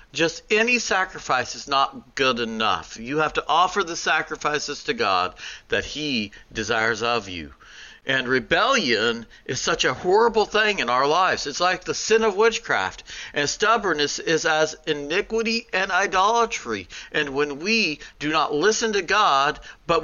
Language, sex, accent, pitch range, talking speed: English, male, American, 135-200 Hz, 160 wpm